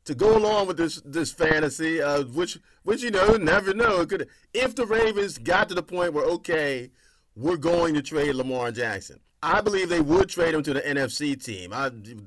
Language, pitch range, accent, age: English, 140-175 Hz, American, 40-59